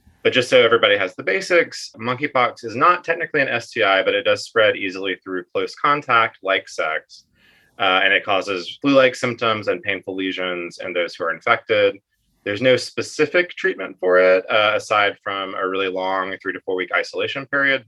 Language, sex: English, male